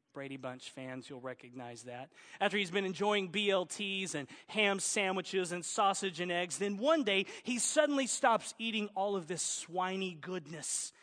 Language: English